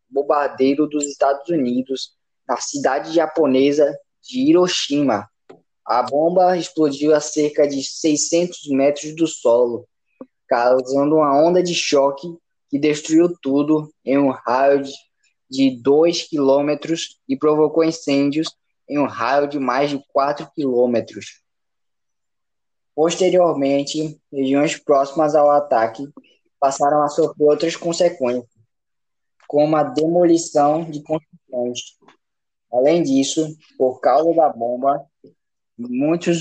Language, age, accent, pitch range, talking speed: Portuguese, 10-29, Brazilian, 135-160 Hz, 110 wpm